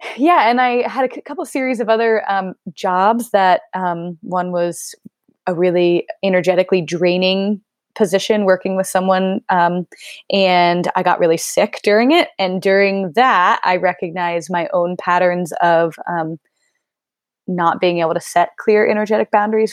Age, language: 20-39, English